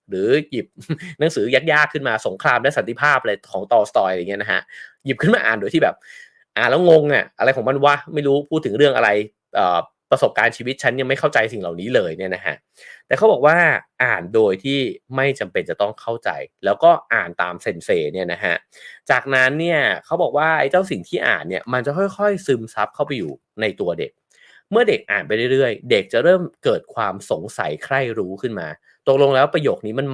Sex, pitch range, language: male, 125-195 Hz, English